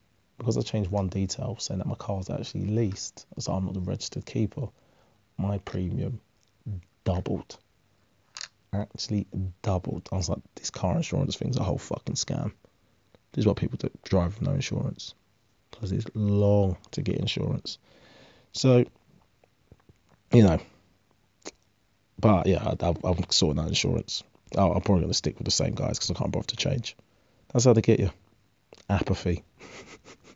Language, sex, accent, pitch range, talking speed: English, male, British, 95-120 Hz, 160 wpm